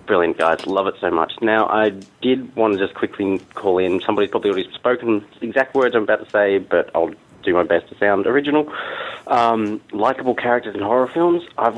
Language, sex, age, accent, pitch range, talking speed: English, male, 30-49, Australian, 100-135 Hz, 205 wpm